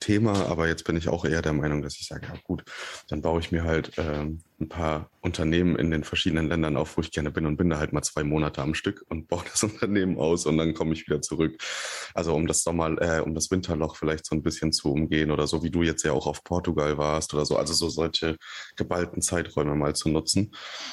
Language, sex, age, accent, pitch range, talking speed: German, male, 30-49, German, 75-85 Hz, 250 wpm